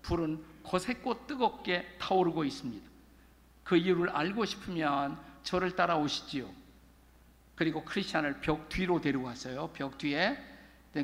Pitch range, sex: 135-185 Hz, male